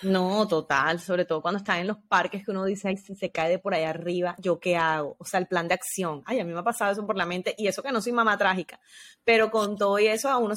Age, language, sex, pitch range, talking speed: 20-39, English, female, 190-230 Hz, 300 wpm